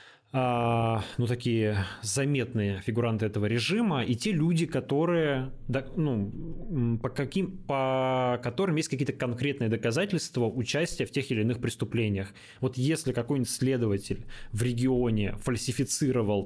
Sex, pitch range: male, 110-135 Hz